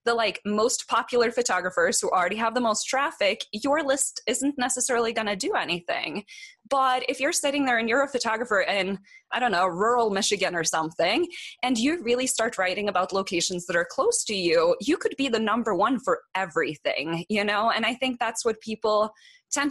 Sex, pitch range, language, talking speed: female, 195-260 Hz, English, 195 wpm